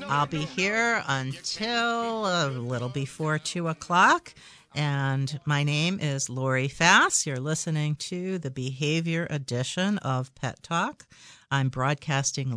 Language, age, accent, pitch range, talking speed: English, 50-69, American, 135-170 Hz, 125 wpm